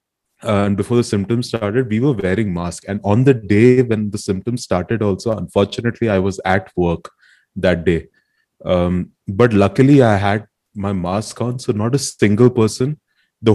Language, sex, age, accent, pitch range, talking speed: Hindi, male, 30-49, native, 95-115 Hz, 175 wpm